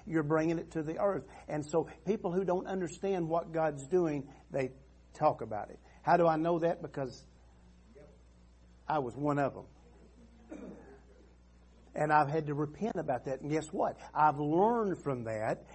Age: 50-69